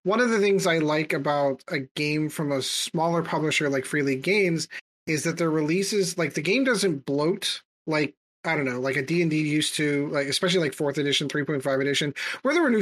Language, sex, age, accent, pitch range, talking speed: English, male, 30-49, American, 145-180 Hz, 230 wpm